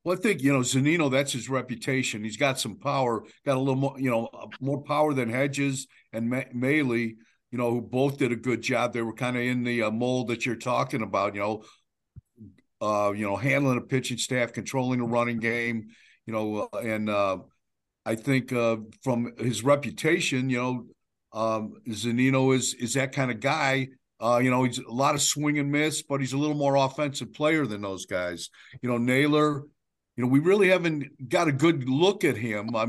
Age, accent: 50-69, American